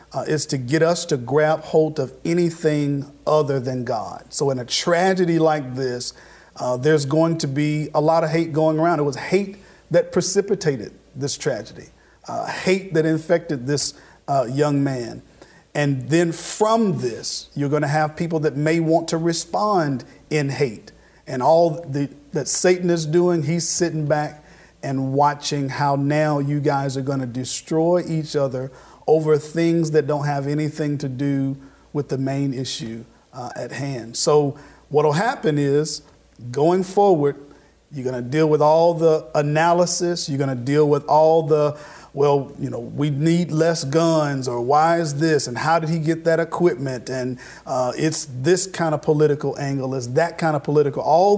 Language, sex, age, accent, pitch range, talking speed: English, male, 50-69, American, 140-165 Hz, 175 wpm